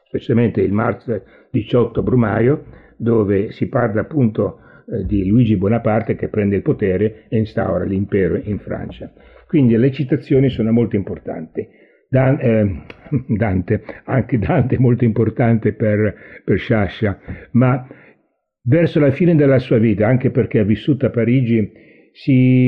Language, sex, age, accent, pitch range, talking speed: Italian, male, 60-79, native, 105-125 Hz, 135 wpm